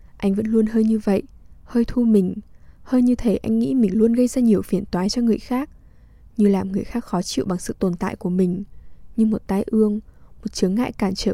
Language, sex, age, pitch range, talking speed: English, female, 10-29, 190-220 Hz, 240 wpm